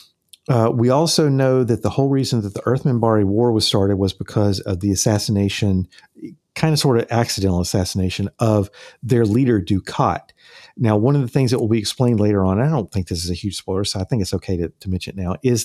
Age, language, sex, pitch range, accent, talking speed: 50-69, English, male, 100-125 Hz, American, 230 wpm